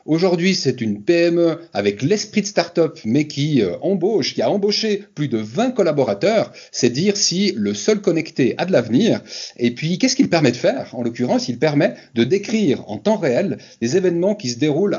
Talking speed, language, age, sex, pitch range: 195 wpm, French, 40-59, male, 125-190 Hz